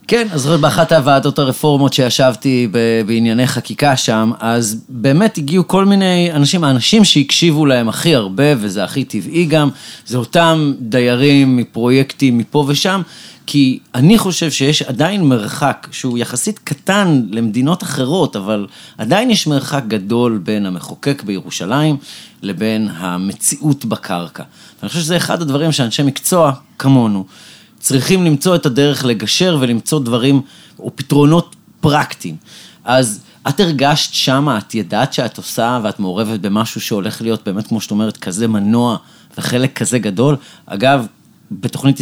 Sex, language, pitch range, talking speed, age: male, Hebrew, 115-150 Hz, 135 wpm, 30-49